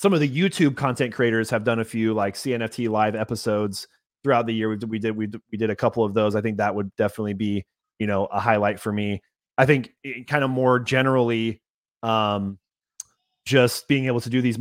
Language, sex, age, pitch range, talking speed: English, male, 30-49, 110-130 Hz, 215 wpm